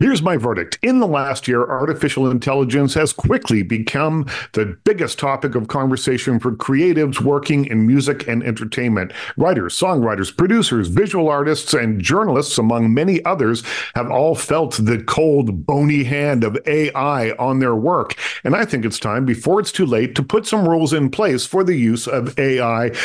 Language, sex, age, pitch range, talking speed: English, male, 50-69, 120-160 Hz, 170 wpm